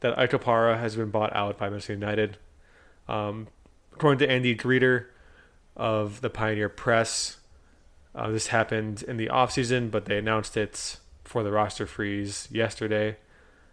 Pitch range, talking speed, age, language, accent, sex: 85-115 Hz, 145 wpm, 20-39, English, American, male